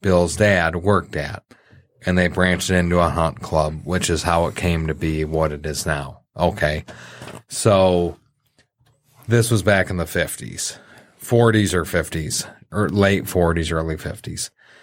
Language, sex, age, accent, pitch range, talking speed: English, male, 40-59, American, 85-105 Hz, 155 wpm